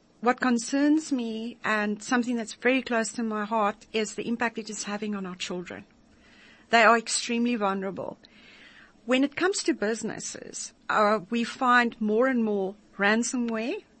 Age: 40-59